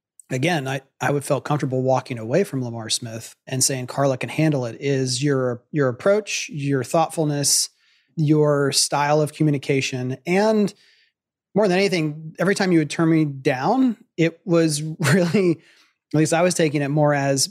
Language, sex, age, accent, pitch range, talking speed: English, male, 30-49, American, 130-165 Hz, 170 wpm